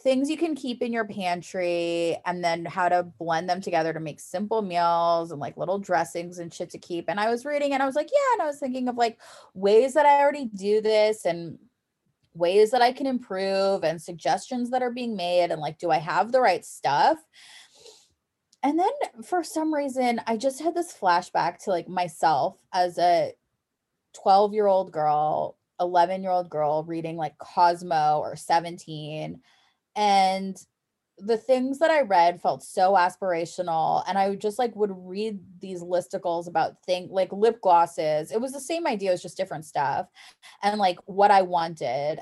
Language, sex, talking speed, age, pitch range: English, female, 190 wpm, 20-39, 175-230 Hz